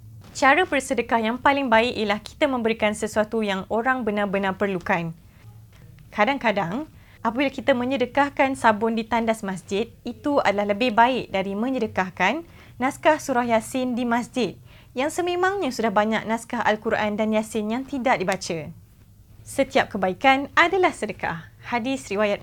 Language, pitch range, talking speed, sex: Indonesian, 200-270 Hz, 130 wpm, female